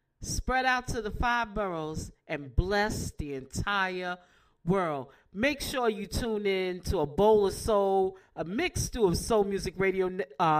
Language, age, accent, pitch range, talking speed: English, 40-59, American, 185-235 Hz, 160 wpm